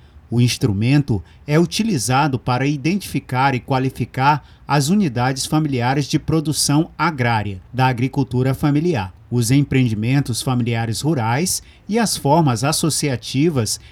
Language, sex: Portuguese, male